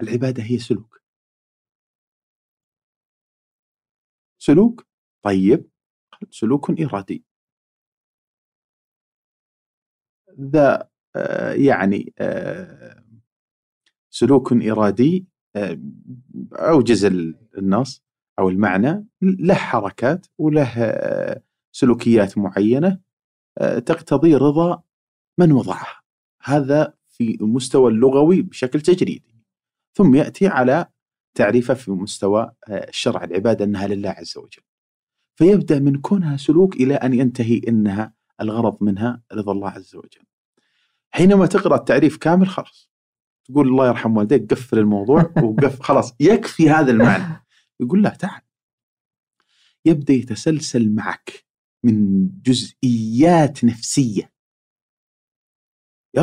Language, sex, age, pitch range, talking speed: Arabic, male, 40-59, 110-160 Hz, 90 wpm